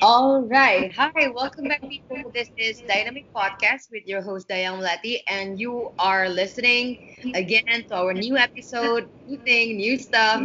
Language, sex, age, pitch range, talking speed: Indonesian, female, 20-39, 195-255 Hz, 150 wpm